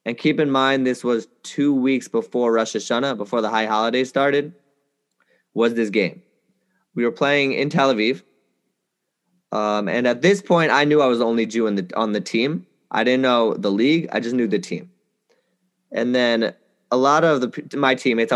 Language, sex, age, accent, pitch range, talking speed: English, male, 20-39, American, 115-145 Hz, 195 wpm